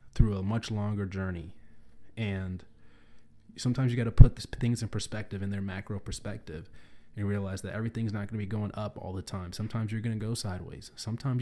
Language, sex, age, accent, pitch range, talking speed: English, male, 20-39, American, 95-115 Hz, 195 wpm